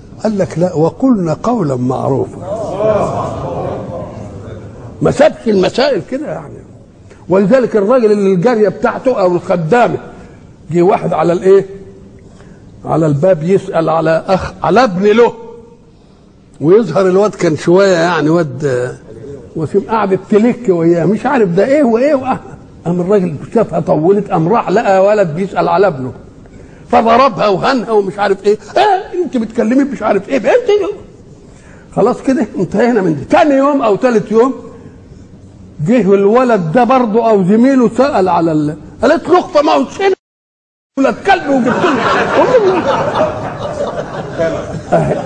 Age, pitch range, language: 60-79, 165-240 Hz, Arabic